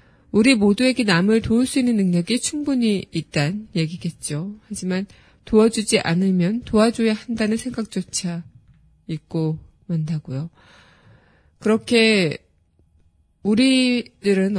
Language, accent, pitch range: Korean, native, 170-215 Hz